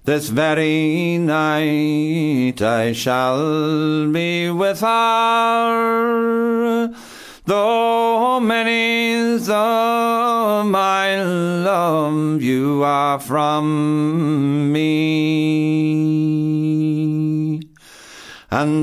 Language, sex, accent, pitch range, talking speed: English, male, American, 150-225 Hz, 55 wpm